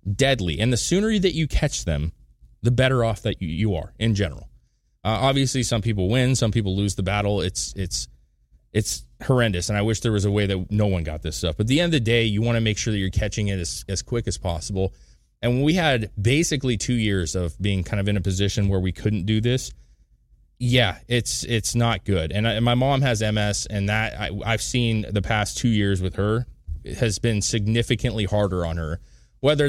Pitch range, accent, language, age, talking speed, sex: 95-115 Hz, American, English, 20-39, 230 wpm, male